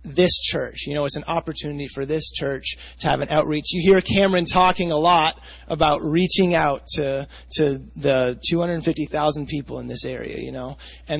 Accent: American